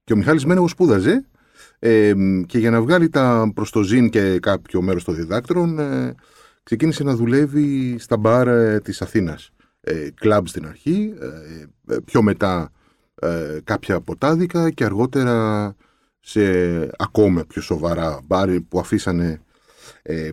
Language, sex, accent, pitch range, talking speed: Greek, male, native, 85-115 Hz, 140 wpm